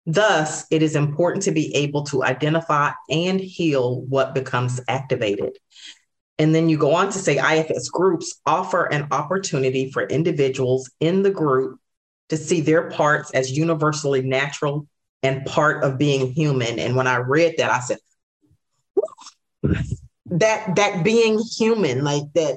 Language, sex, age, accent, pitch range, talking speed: English, female, 40-59, American, 145-195 Hz, 150 wpm